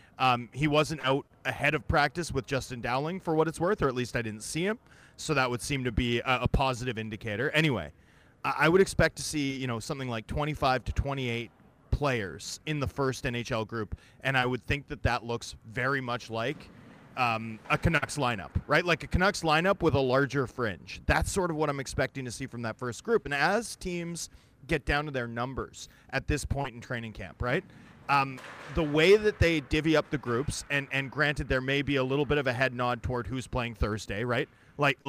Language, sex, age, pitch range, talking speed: English, male, 30-49, 120-145 Hz, 220 wpm